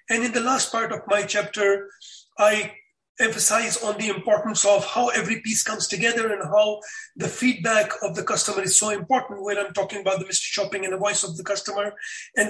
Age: 30-49